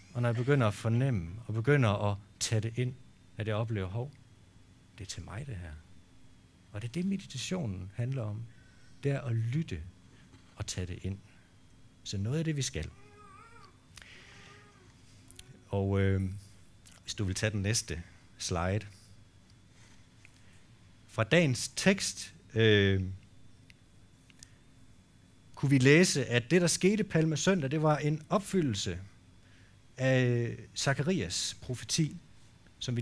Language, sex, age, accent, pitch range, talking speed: Danish, male, 60-79, native, 95-125 Hz, 135 wpm